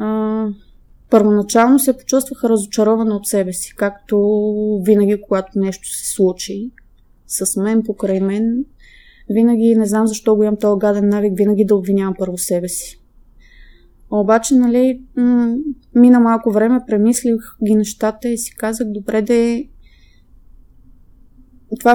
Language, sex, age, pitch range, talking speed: Bulgarian, female, 20-39, 205-230 Hz, 130 wpm